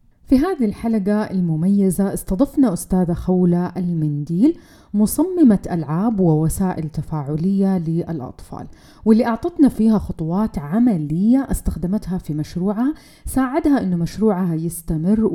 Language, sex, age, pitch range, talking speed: Arabic, female, 30-49, 165-220 Hz, 100 wpm